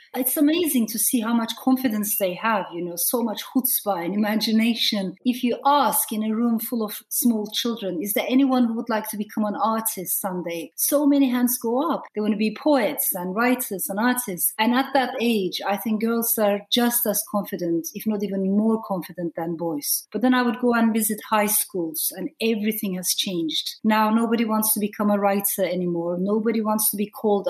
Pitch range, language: 200-245 Hz, English